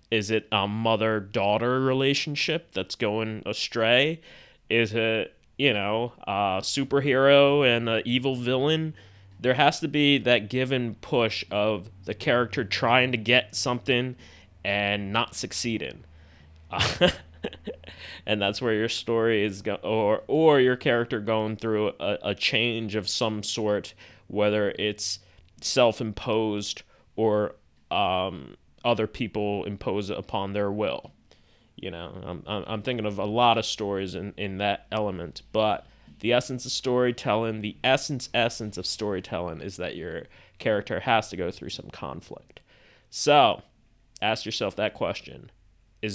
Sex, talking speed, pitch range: male, 140 wpm, 100-125 Hz